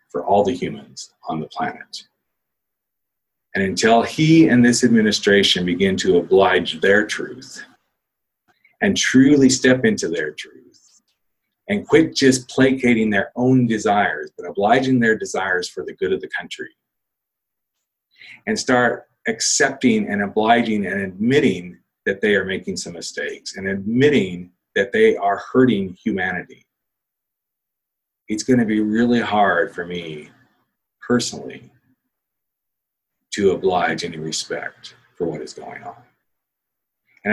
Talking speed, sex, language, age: 130 wpm, male, English, 40-59